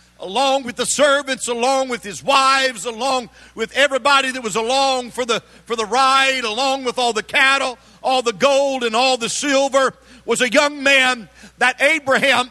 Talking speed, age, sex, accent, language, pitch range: 180 wpm, 50-69, male, American, English, 230-270 Hz